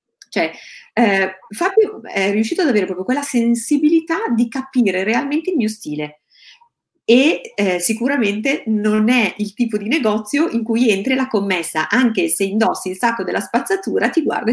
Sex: female